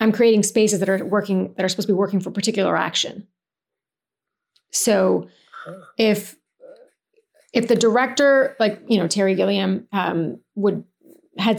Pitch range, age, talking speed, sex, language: 195-225 Hz, 30-49, 145 wpm, female, English